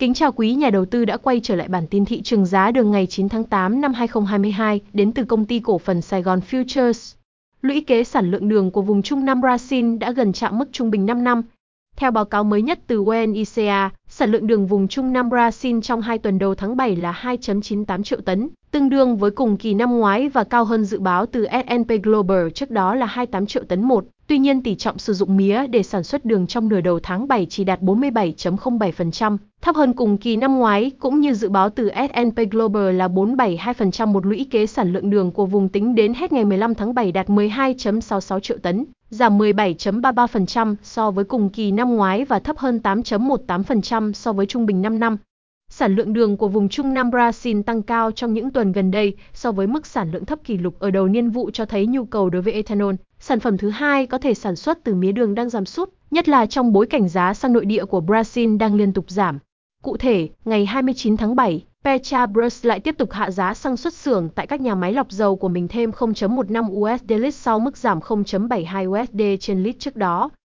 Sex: female